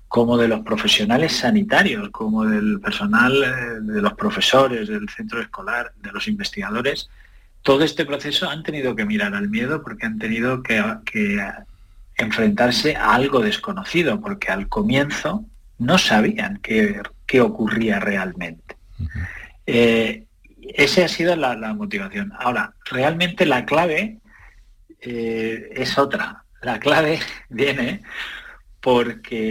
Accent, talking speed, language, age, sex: Spanish, 125 wpm, Spanish, 40-59, male